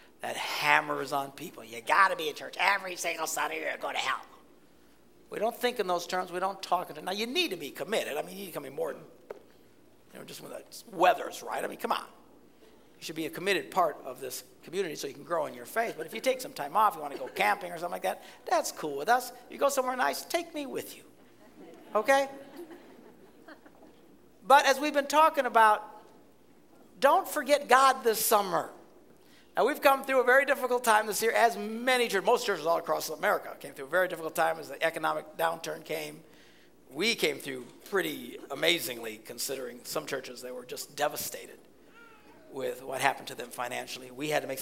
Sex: male